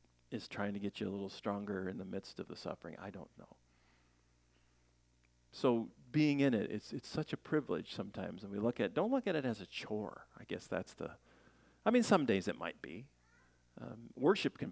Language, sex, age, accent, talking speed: English, male, 40-59, American, 210 wpm